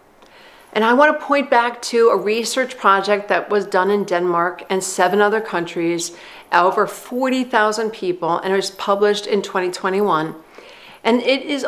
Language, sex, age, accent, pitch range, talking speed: English, female, 50-69, American, 200-245 Hz, 155 wpm